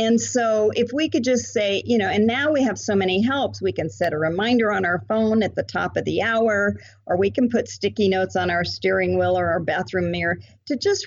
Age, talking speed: 50-69, 250 wpm